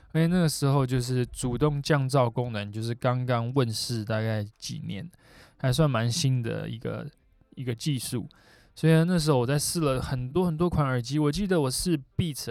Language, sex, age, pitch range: Chinese, male, 20-39, 125-165 Hz